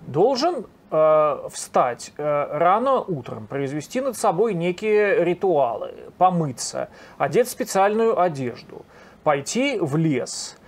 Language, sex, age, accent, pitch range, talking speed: Russian, male, 30-49, native, 150-195 Hz, 100 wpm